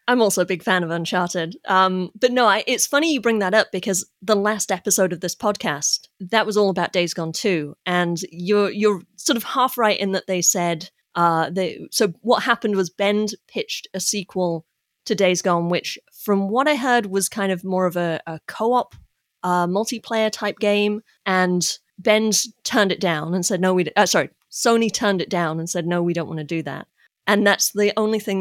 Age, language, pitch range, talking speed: 30-49, English, 175-210 Hz, 215 wpm